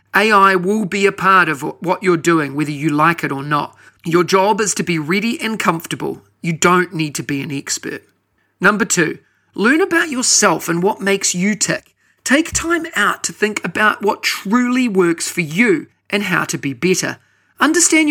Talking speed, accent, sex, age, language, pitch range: 190 wpm, Australian, male, 40-59, English, 165-210 Hz